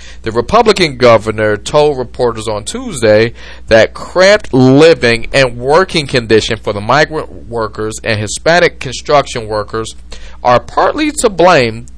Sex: male